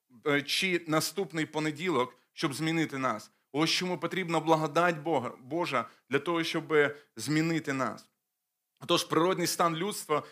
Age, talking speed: 30-49, 120 wpm